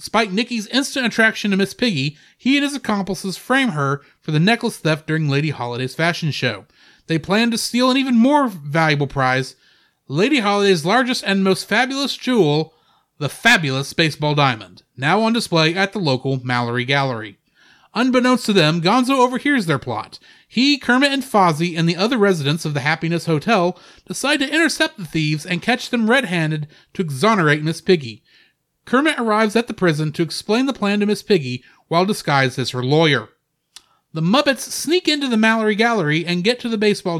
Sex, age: male, 30-49